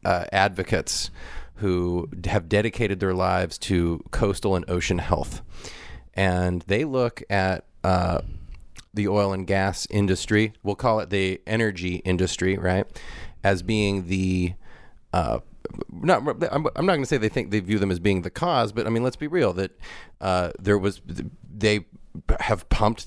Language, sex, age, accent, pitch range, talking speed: English, male, 30-49, American, 90-115 Hz, 155 wpm